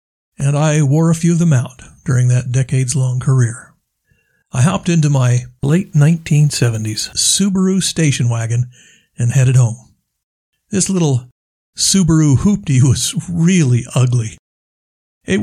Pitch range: 125-160 Hz